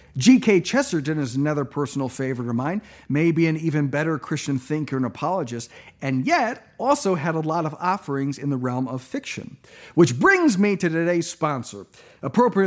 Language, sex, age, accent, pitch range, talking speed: English, male, 40-59, American, 135-200 Hz, 170 wpm